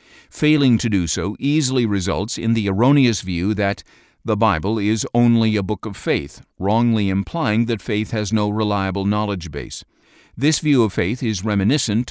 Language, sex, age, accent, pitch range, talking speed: English, male, 50-69, American, 105-130 Hz, 170 wpm